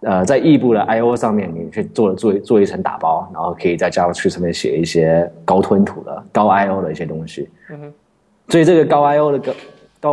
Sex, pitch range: male, 90-150 Hz